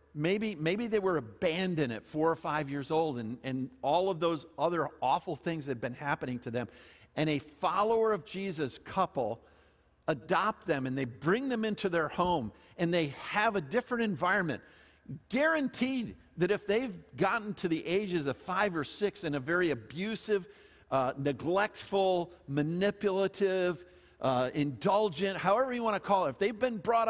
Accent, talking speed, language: American, 170 wpm, English